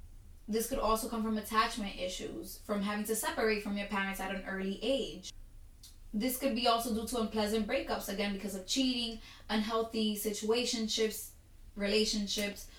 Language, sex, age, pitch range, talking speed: English, female, 20-39, 195-230 Hz, 155 wpm